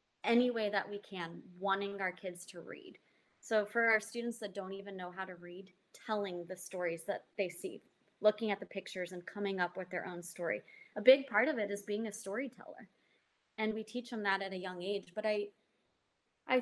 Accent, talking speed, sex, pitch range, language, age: American, 215 wpm, female, 185-220 Hz, English, 20-39